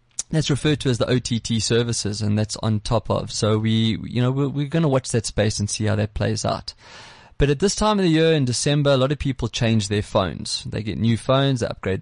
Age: 20-39